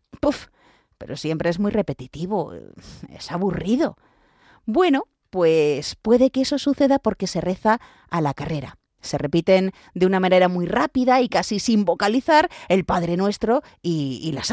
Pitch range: 165-240 Hz